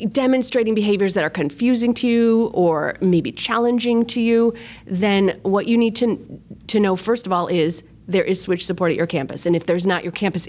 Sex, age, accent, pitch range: female, 30-49, American, 170-220 Hz